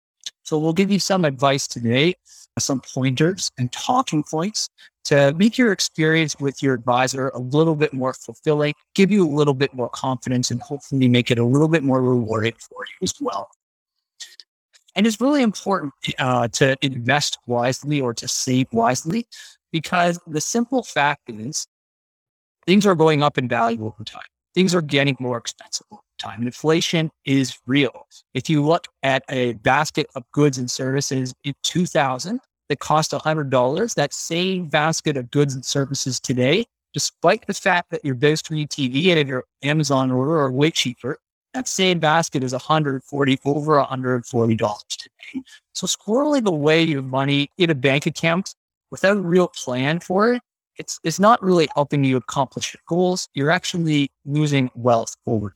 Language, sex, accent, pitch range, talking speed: English, male, American, 130-170 Hz, 165 wpm